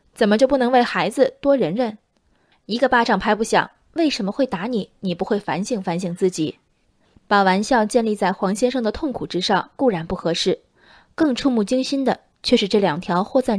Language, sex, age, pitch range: Chinese, female, 20-39, 190-250 Hz